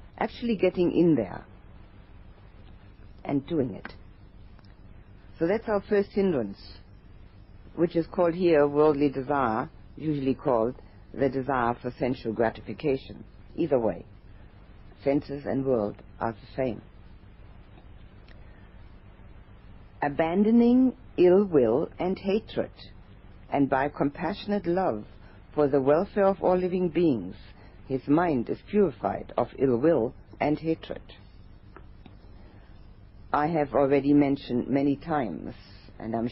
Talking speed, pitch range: 105 wpm, 100-145 Hz